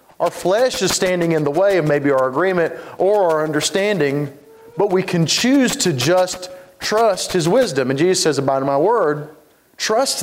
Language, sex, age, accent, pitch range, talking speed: English, male, 40-59, American, 150-185 Hz, 180 wpm